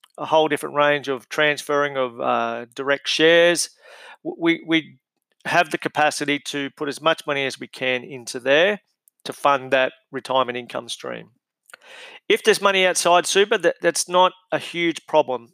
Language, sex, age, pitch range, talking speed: English, male, 40-59, 135-170 Hz, 160 wpm